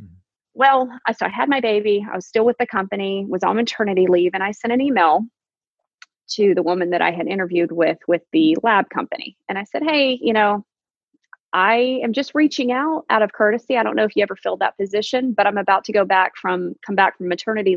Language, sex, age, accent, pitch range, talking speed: English, female, 30-49, American, 185-250 Hz, 225 wpm